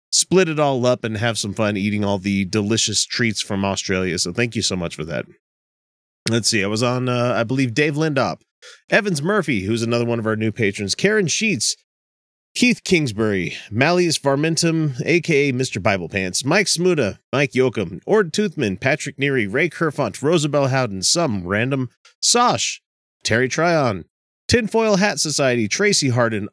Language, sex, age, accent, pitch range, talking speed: English, male, 30-49, American, 105-165 Hz, 165 wpm